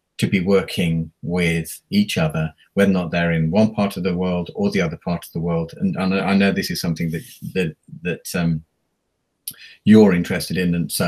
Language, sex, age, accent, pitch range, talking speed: English, male, 40-59, British, 85-120 Hz, 210 wpm